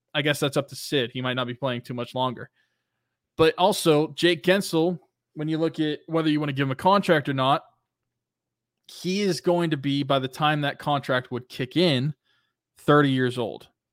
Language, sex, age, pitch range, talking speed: English, male, 20-39, 125-155 Hz, 205 wpm